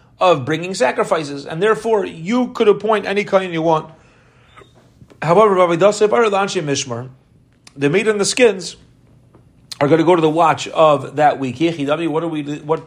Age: 40-59